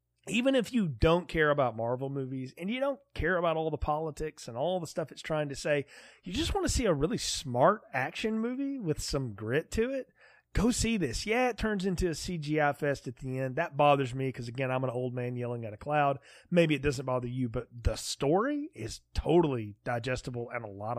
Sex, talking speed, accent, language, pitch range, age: male, 225 wpm, American, English, 120-160 Hz, 30-49